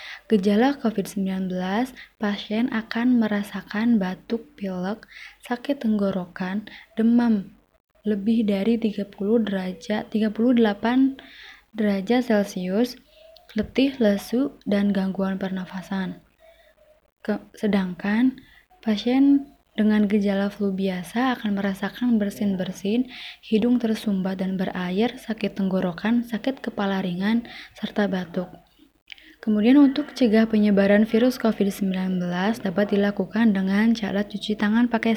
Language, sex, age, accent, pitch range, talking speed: Indonesian, female, 20-39, native, 195-235 Hz, 95 wpm